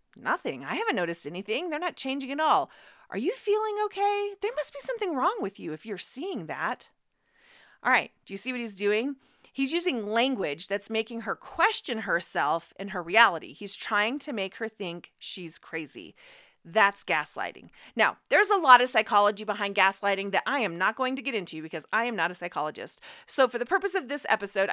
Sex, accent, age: female, American, 40-59